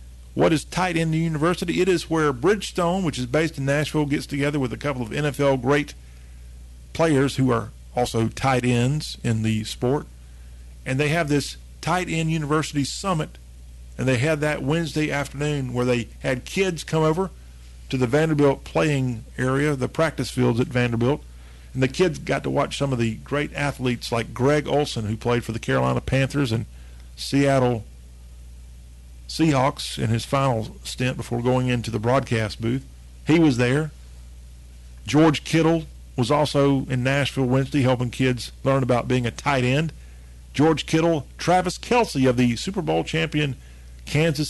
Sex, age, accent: male, 50-69, American